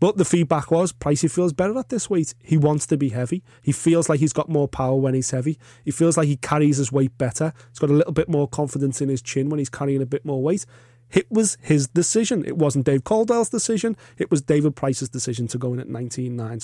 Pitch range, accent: 130-165 Hz, British